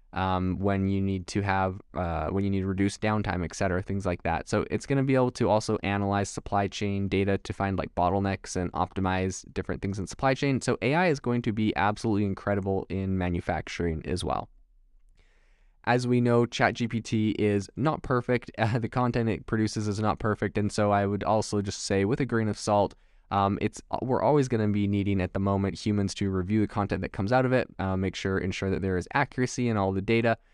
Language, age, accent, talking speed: English, 10-29, American, 220 wpm